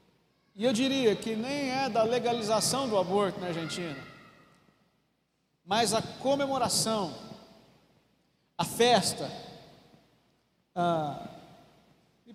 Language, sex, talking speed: Portuguese, male, 85 wpm